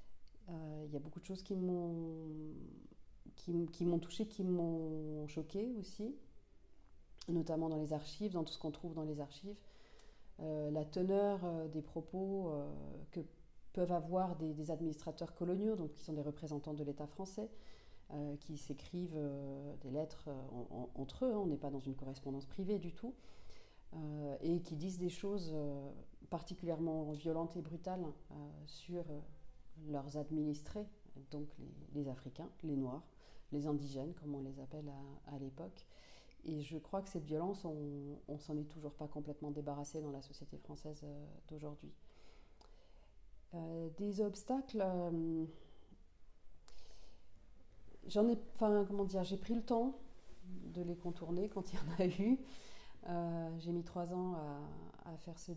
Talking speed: 160 wpm